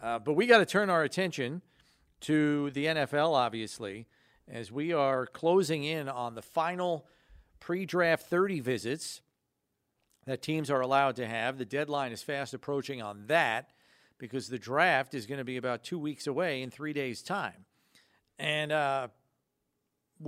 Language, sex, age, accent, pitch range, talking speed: English, male, 40-59, American, 120-150 Hz, 155 wpm